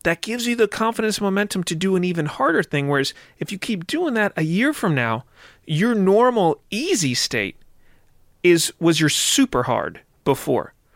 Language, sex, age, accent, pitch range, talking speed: English, male, 40-59, American, 140-185 Hz, 175 wpm